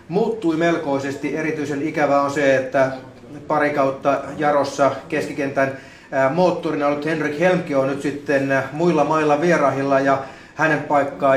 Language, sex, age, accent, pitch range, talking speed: Finnish, male, 30-49, native, 135-160 Hz, 125 wpm